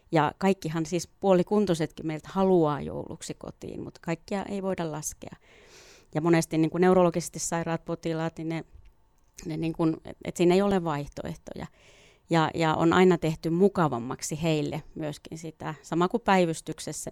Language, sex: Finnish, female